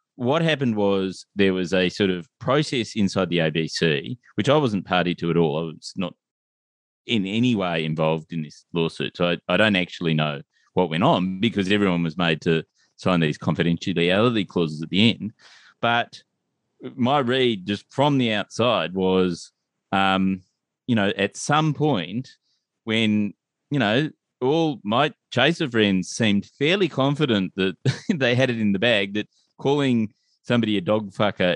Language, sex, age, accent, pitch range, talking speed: English, male, 30-49, Australian, 95-135 Hz, 165 wpm